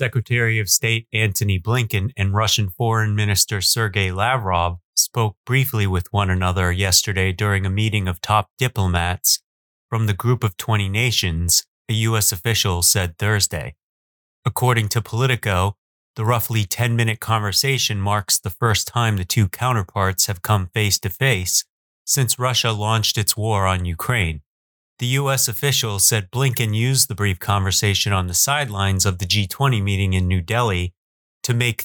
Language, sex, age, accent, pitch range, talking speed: English, male, 30-49, American, 95-120 Hz, 150 wpm